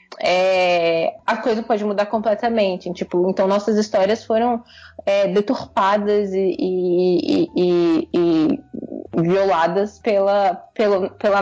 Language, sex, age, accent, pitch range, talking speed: Portuguese, female, 10-29, Brazilian, 185-235 Hz, 85 wpm